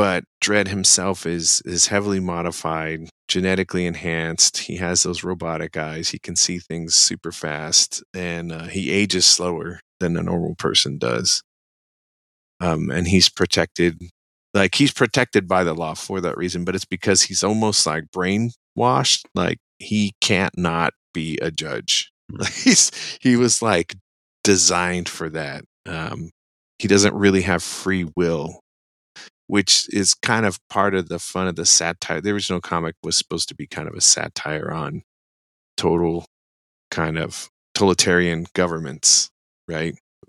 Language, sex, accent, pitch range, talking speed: English, male, American, 85-100 Hz, 150 wpm